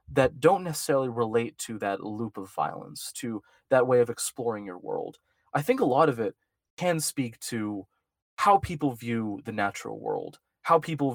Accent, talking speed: American, 180 wpm